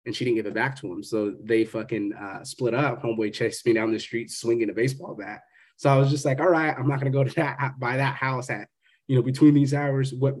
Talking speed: 270 wpm